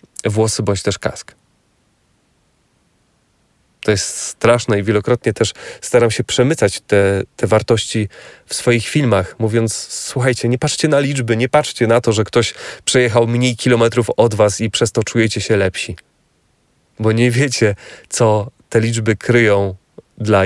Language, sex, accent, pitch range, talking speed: Polish, male, native, 105-120 Hz, 145 wpm